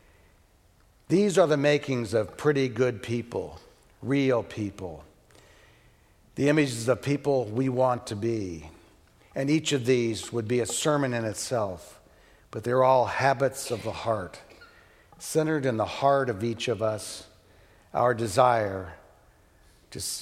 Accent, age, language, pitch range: American, 60-79, English, 105-135 Hz